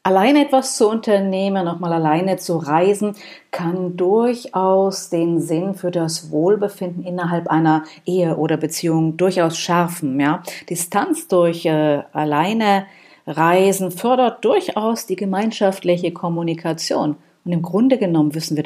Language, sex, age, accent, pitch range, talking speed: German, female, 50-69, German, 160-190 Hz, 125 wpm